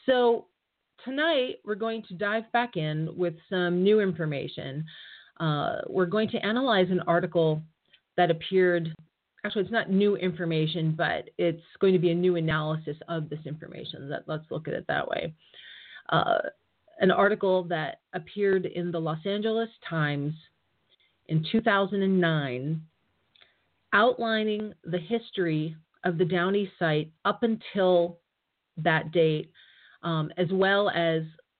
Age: 30-49